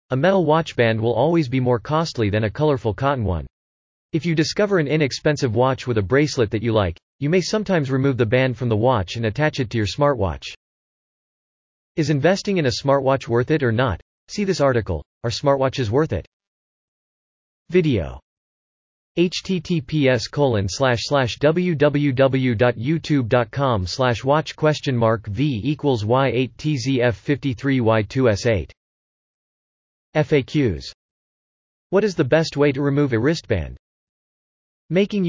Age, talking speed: 40-59, 120 wpm